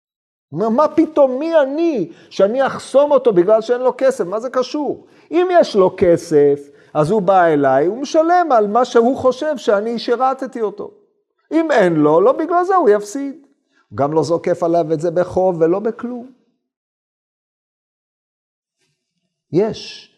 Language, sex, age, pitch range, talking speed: Hebrew, male, 50-69, 165-235 Hz, 145 wpm